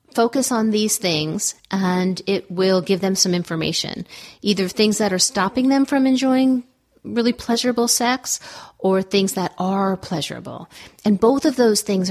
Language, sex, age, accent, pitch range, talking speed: English, female, 40-59, American, 175-210 Hz, 160 wpm